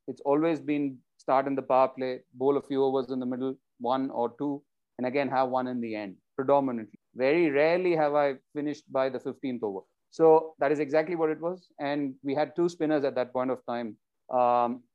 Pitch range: 130-160 Hz